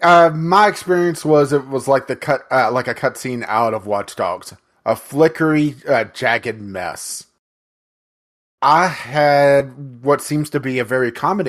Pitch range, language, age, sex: 110-155 Hz, English, 30-49, male